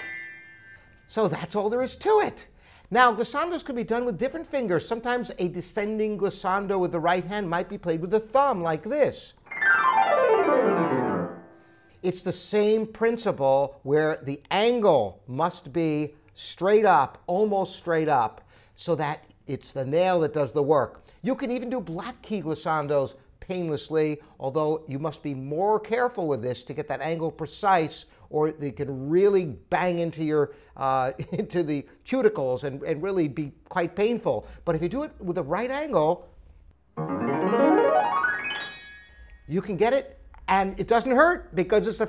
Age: 50-69